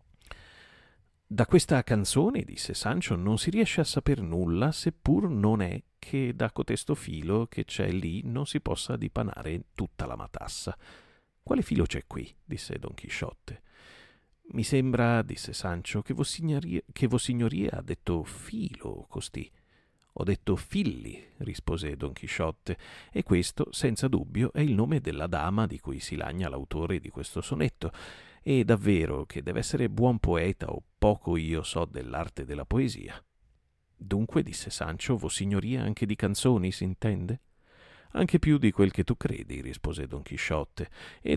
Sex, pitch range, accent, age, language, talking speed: male, 85-120 Hz, native, 40-59, Italian, 150 wpm